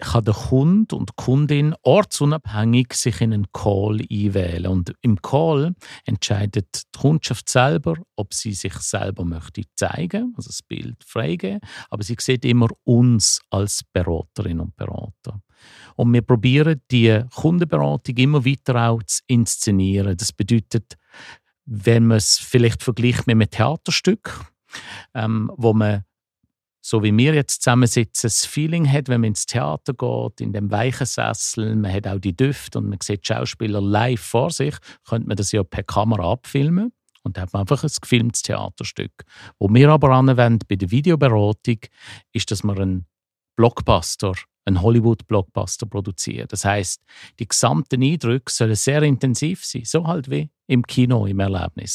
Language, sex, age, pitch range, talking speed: German, male, 50-69, 100-130 Hz, 160 wpm